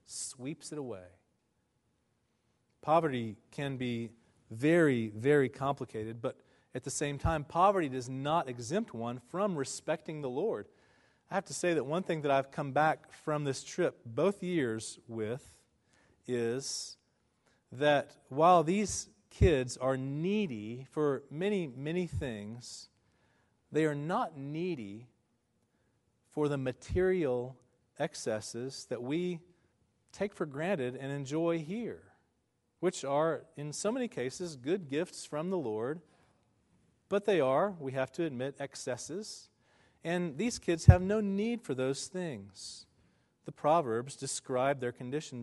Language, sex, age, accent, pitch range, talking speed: English, male, 40-59, American, 120-165 Hz, 130 wpm